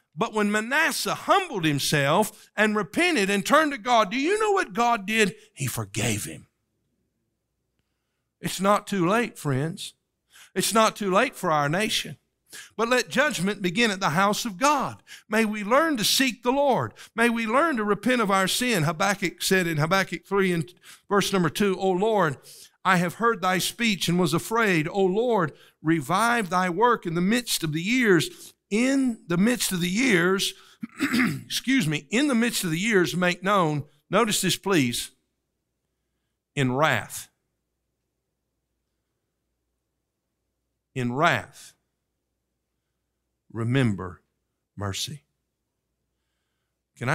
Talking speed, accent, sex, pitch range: 145 wpm, American, male, 135-220 Hz